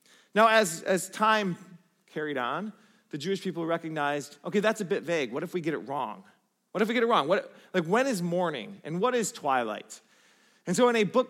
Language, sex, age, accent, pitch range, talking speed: English, male, 30-49, American, 170-230 Hz, 220 wpm